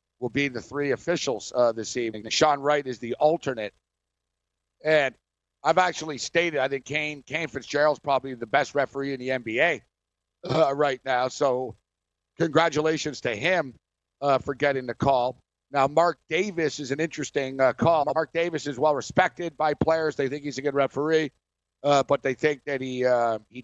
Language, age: English, 50-69